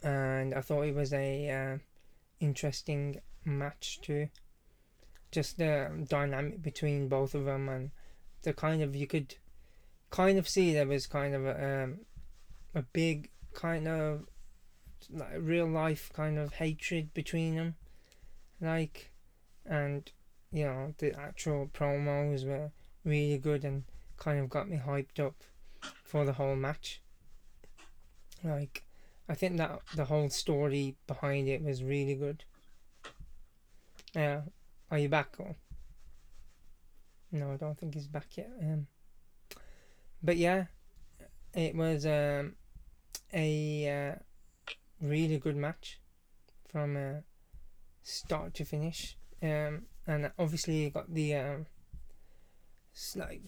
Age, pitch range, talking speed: 20-39, 140-160 Hz, 125 wpm